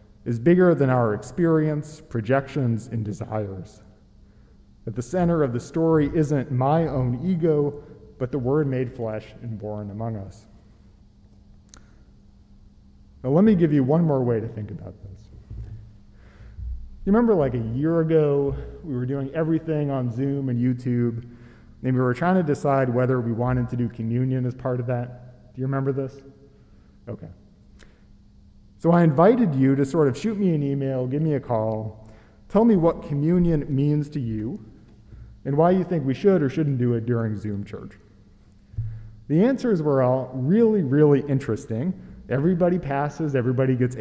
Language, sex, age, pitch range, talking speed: English, male, 40-59, 110-155 Hz, 165 wpm